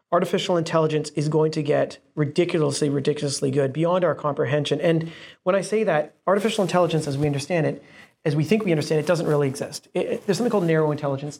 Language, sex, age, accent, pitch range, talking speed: English, male, 30-49, American, 145-175 Hz, 205 wpm